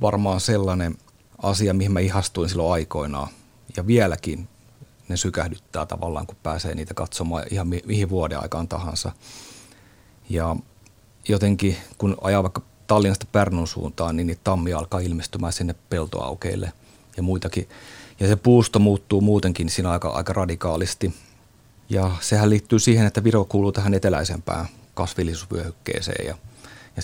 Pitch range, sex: 85-105 Hz, male